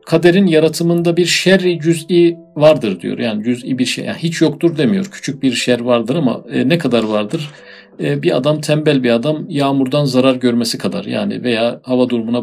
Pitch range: 125-160 Hz